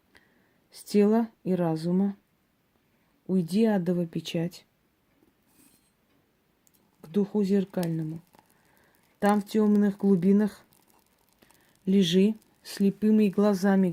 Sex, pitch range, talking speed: female, 185-205 Hz, 75 wpm